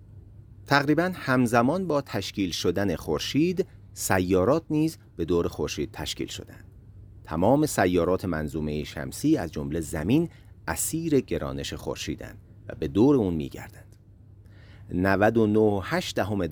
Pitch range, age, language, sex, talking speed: 85-115 Hz, 40-59, Persian, male, 105 wpm